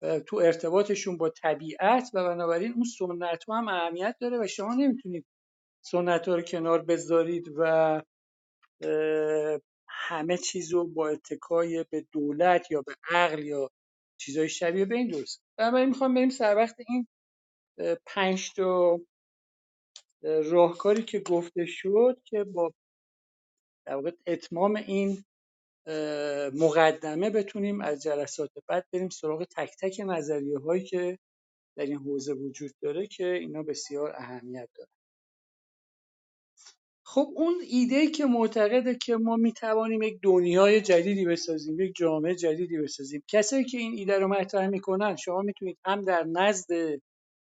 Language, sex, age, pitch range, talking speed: Persian, male, 50-69, 155-205 Hz, 125 wpm